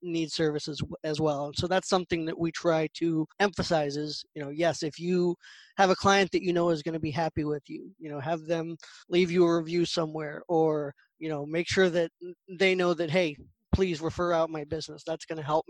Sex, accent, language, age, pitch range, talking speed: male, American, English, 20-39, 155-180 Hz, 230 wpm